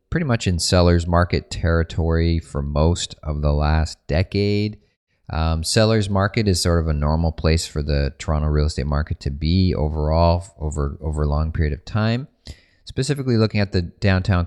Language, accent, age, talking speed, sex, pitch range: English, American, 30-49, 175 wpm, male, 75-95 Hz